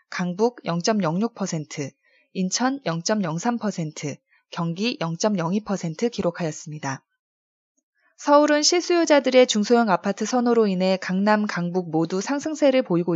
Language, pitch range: Korean, 180-260 Hz